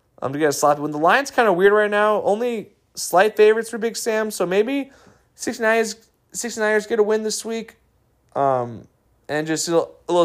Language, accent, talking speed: English, American, 215 wpm